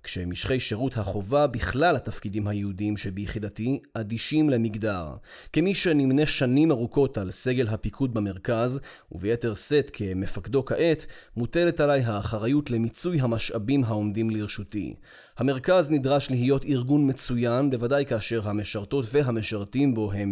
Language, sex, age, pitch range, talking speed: Hebrew, male, 30-49, 110-140 Hz, 115 wpm